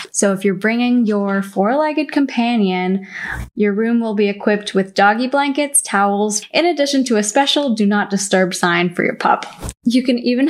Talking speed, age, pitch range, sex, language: 175 wpm, 10-29, 190-245 Hz, female, English